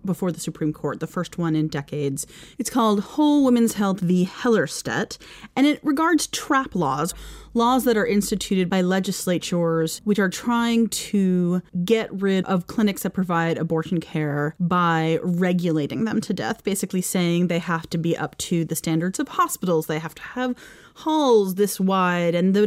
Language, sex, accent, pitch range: English, female, American, 165-220 Hz